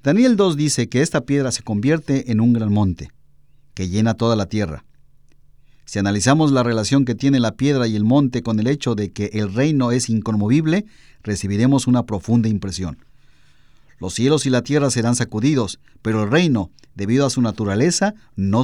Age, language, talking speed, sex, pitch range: 50-69, Spanish, 180 wpm, male, 115-150 Hz